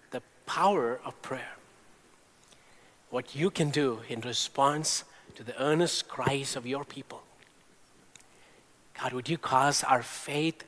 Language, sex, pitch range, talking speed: English, male, 125-150 Hz, 125 wpm